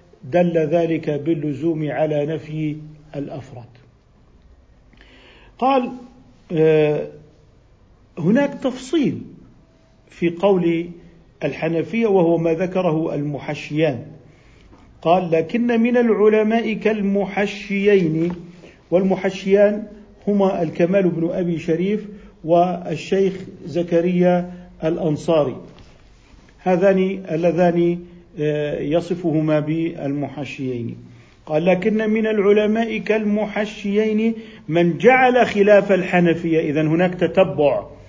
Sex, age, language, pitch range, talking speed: male, 50-69, Arabic, 160-210 Hz, 75 wpm